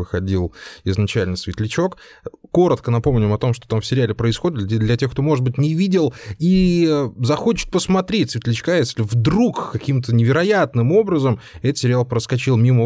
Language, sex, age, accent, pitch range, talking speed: Russian, male, 20-39, native, 115-160 Hz, 150 wpm